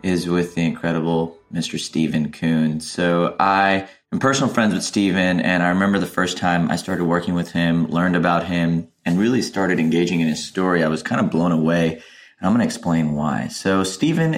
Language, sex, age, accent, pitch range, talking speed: English, male, 30-49, American, 80-95 Hz, 205 wpm